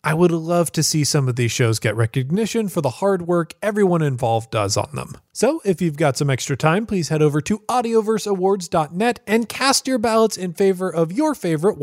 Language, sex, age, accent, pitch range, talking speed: English, male, 30-49, American, 150-215 Hz, 210 wpm